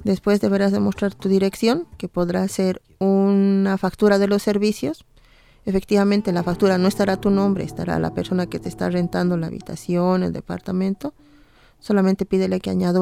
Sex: female